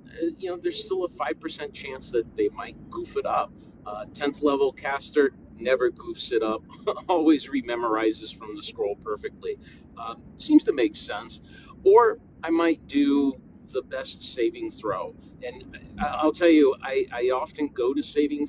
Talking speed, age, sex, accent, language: 165 wpm, 40-59, male, American, English